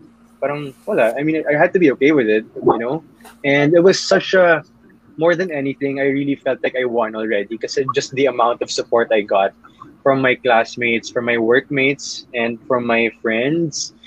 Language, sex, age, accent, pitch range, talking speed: English, male, 20-39, Filipino, 115-150 Hz, 190 wpm